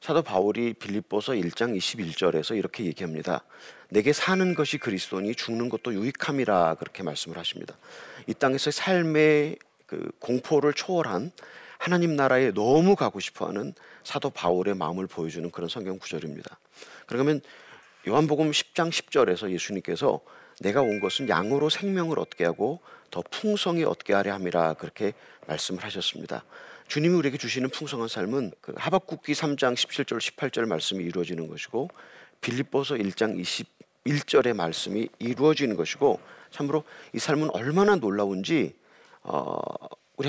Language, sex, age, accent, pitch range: Korean, male, 40-59, native, 105-155 Hz